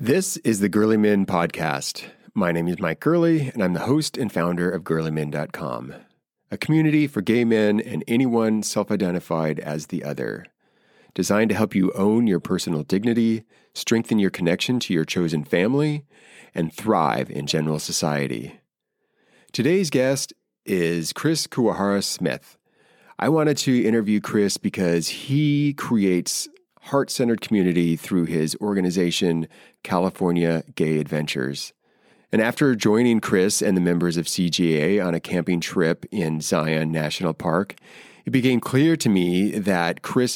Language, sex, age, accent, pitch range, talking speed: English, male, 30-49, American, 85-120 Hz, 145 wpm